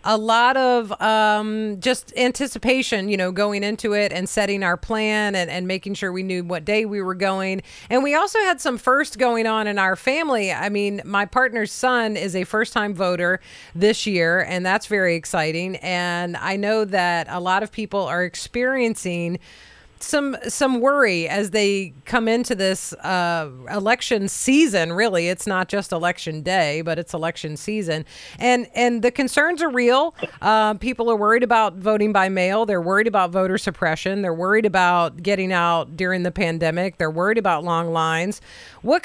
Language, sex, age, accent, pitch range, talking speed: English, female, 40-59, American, 180-235 Hz, 180 wpm